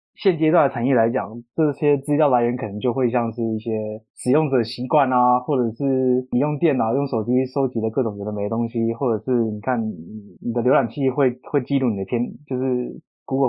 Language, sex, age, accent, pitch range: Chinese, male, 20-39, native, 115-140 Hz